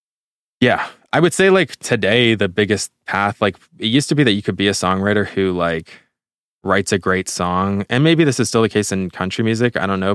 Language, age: English, 20-39